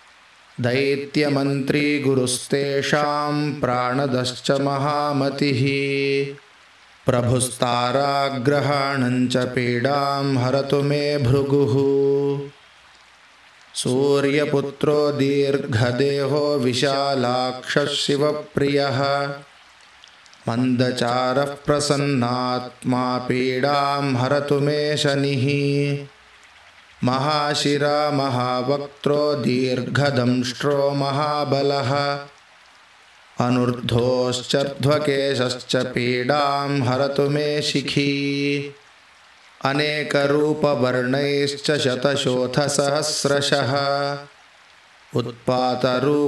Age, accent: 20-39, native